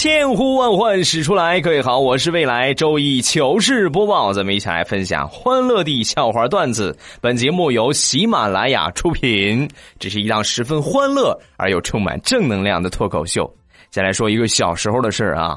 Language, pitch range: Chinese, 110-175 Hz